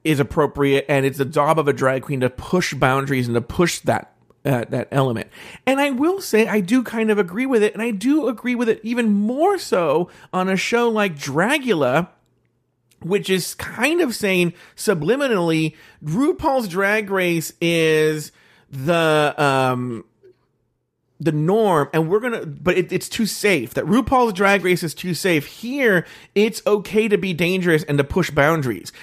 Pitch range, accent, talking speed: 140-205 Hz, American, 175 wpm